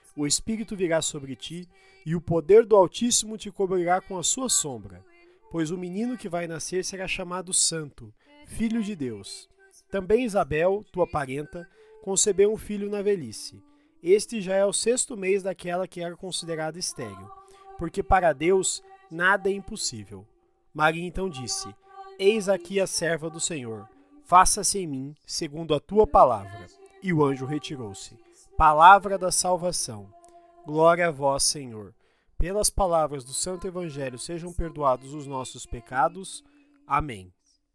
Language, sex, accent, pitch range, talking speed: Portuguese, male, Brazilian, 155-210 Hz, 145 wpm